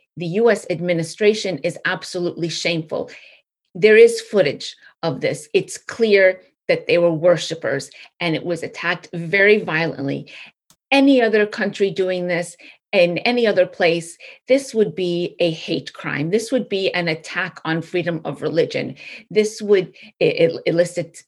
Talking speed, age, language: 140 wpm, 30-49, English